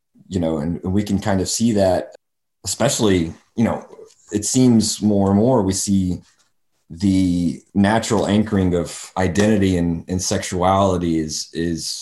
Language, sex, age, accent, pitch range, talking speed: English, male, 30-49, American, 90-105 Hz, 150 wpm